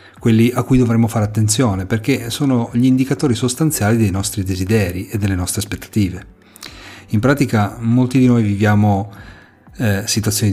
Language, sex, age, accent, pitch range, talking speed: Italian, male, 40-59, native, 100-125 Hz, 150 wpm